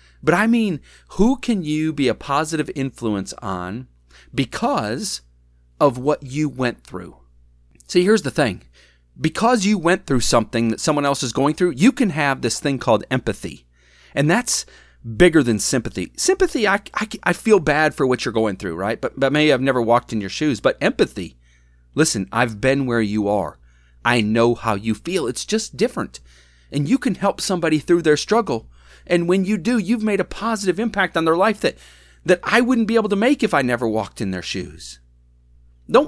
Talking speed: 195 wpm